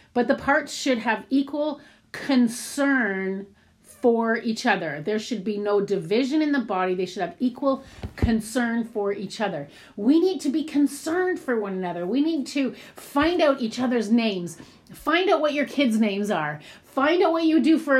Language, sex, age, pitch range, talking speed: English, female, 40-59, 185-255 Hz, 185 wpm